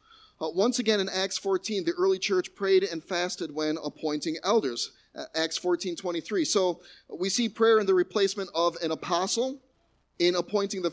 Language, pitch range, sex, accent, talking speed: English, 155-195 Hz, male, American, 175 wpm